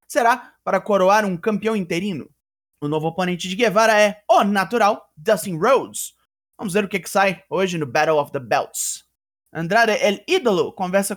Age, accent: 20-39, Brazilian